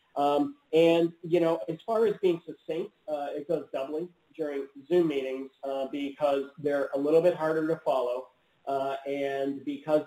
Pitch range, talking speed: 135-170 Hz, 165 wpm